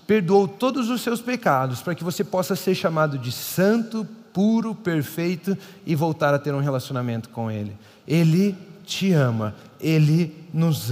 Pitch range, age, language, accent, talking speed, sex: 180-235 Hz, 40-59, Portuguese, Brazilian, 155 wpm, male